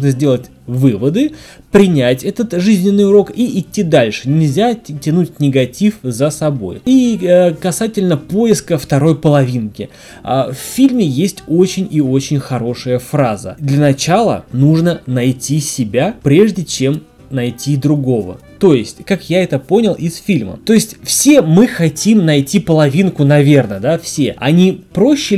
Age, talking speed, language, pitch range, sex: 20-39, 135 wpm, Russian, 135-175 Hz, male